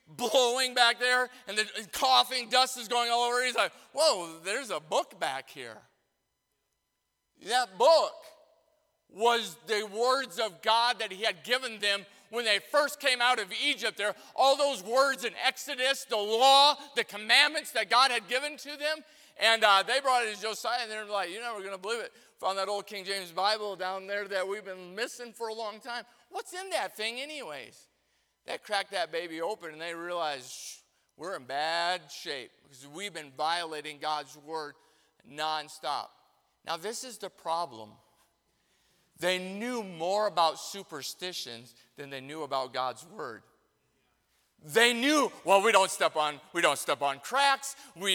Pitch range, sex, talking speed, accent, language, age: 175-260 Hz, male, 170 wpm, American, English, 40-59